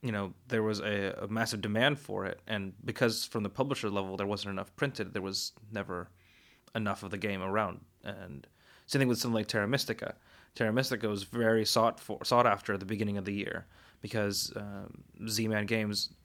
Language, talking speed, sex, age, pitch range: English, 200 wpm, male, 20-39, 100-115 Hz